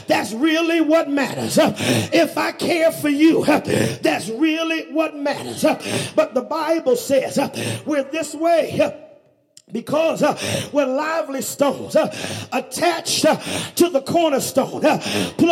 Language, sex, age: English, male, 40-59